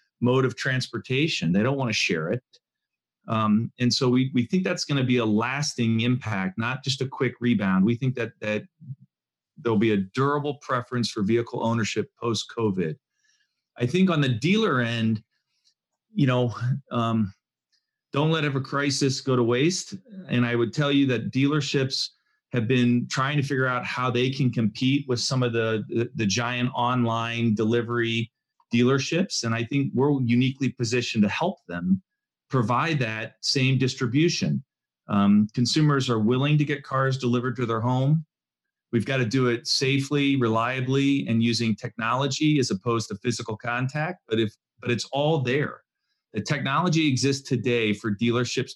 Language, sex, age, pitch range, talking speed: English, male, 40-59, 115-140 Hz, 165 wpm